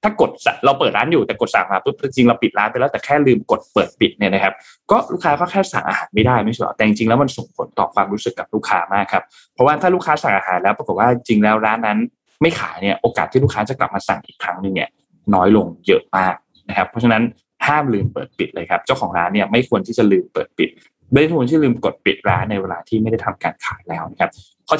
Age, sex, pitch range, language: 20-39, male, 100-135 Hz, Thai